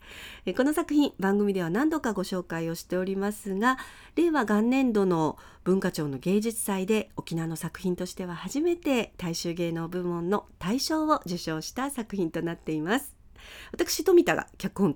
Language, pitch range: Japanese, 180-275 Hz